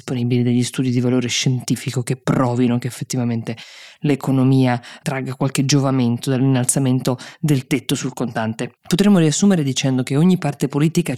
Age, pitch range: 20-39, 130-150 Hz